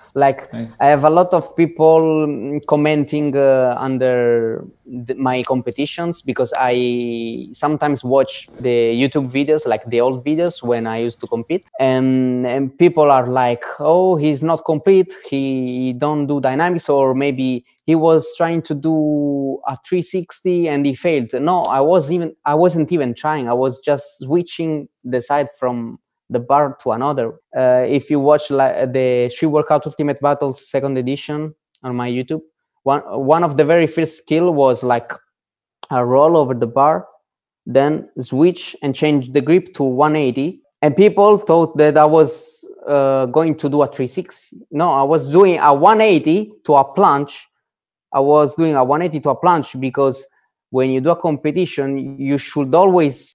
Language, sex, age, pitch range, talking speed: English, male, 20-39, 130-160 Hz, 170 wpm